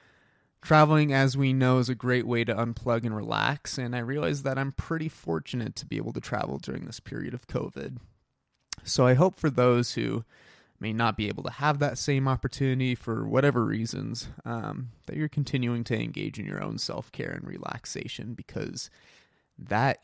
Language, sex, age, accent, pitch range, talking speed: English, male, 20-39, American, 115-135 Hz, 185 wpm